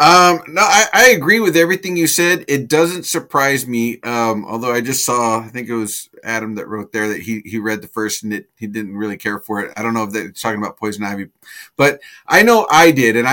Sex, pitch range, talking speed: male, 115-160 Hz, 250 wpm